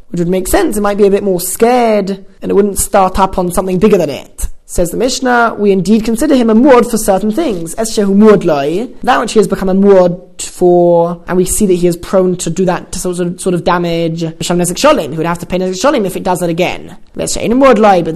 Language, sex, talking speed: English, male, 250 wpm